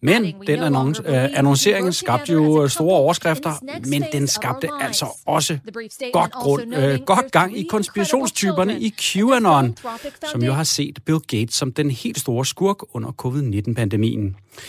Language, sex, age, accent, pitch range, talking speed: Danish, male, 30-49, native, 120-155 Hz, 135 wpm